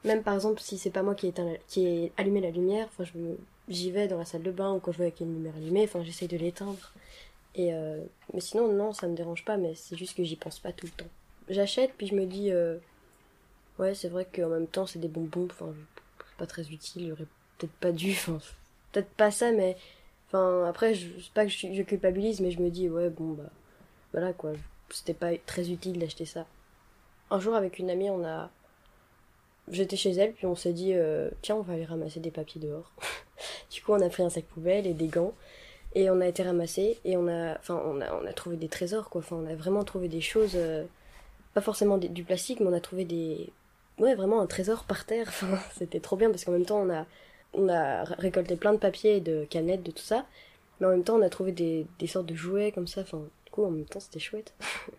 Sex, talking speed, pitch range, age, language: female, 240 wpm, 165-195 Hz, 20-39, French